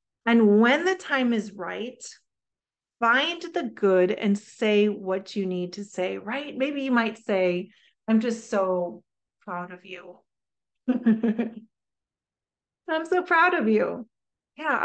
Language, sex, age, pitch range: English, female, 30-49, 210-305 Hz